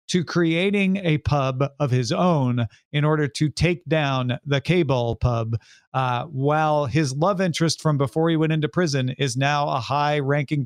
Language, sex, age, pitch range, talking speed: English, male, 40-59, 135-170 Hz, 175 wpm